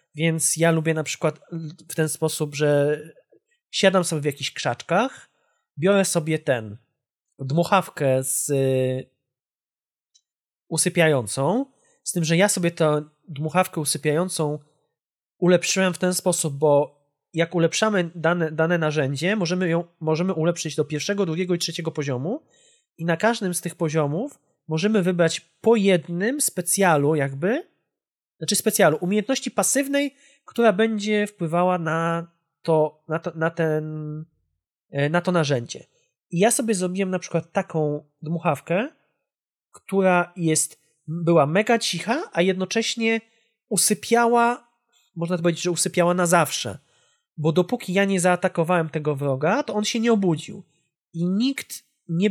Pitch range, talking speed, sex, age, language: 155-200 Hz, 130 wpm, male, 20-39, Polish